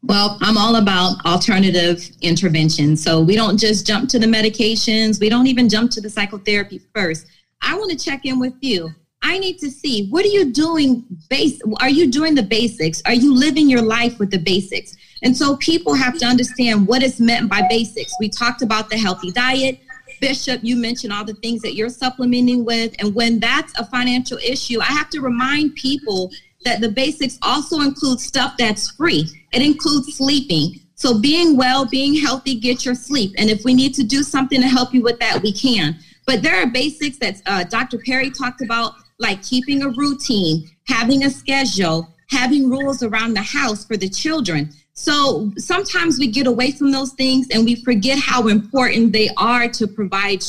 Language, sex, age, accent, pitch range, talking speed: English, female, 30-49, American, 210-270 Hz, 195 wpm